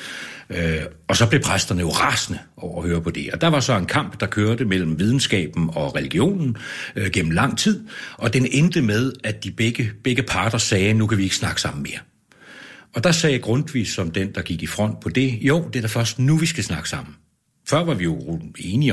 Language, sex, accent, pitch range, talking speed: Danish, male, native, 90-125 Hz, 230 wpm